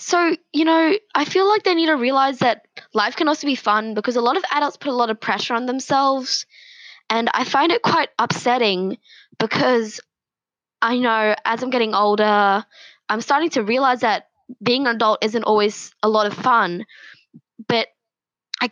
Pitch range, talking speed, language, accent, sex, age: 200-245 Hz, 185 wpm, English, Australian, female, 10-29